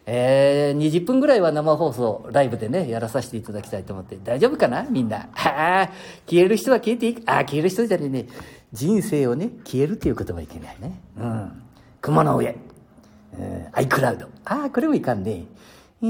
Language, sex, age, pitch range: Japanese, male, 50-69, 115-185 Hz